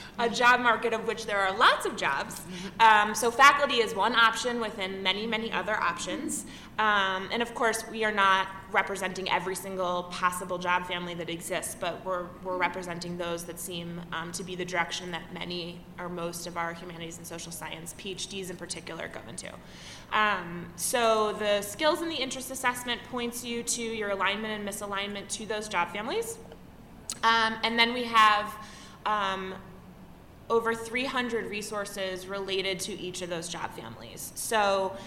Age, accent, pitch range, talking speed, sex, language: 20-39, American, 190-230 Hz, 170 wpm, female, English